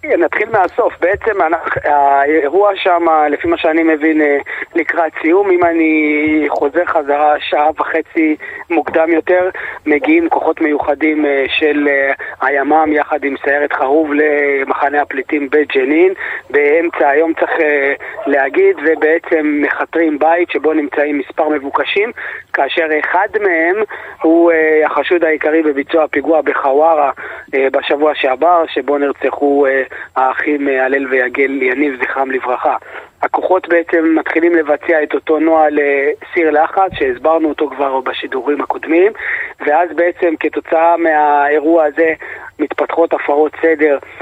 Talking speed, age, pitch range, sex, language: 115 wpm, 20-39, 145-175 Hz, male, Hebrew